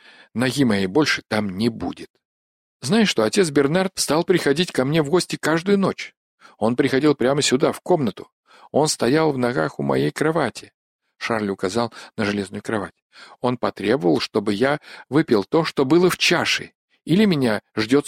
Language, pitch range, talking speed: Russian, 115-160 Hz, 165 wpm